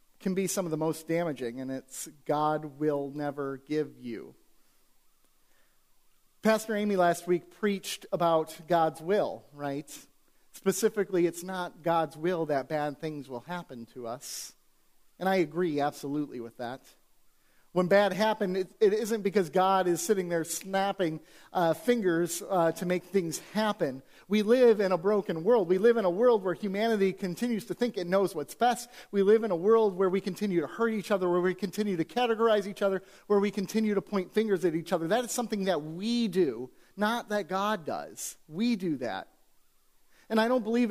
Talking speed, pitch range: 185 wpm, 165-215 Hz